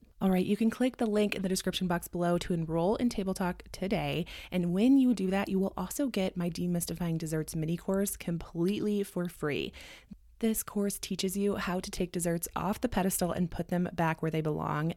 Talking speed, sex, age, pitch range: 215 wpm, female, 20-39, 170-200 Hz